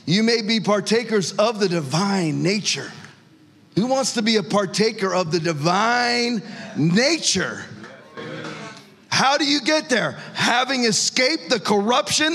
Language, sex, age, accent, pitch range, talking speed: English, male, 40-59, American, 175-240 Hz, 130 wpm